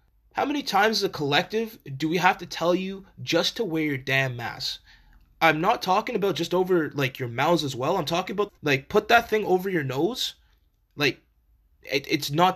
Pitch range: 135-185 Hz